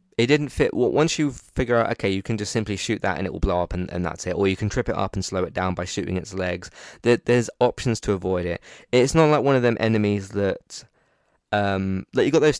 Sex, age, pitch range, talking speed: male, 20-39, 95-115 Hz, 265 wpm